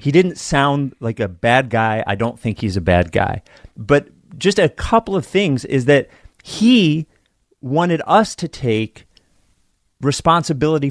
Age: 30-49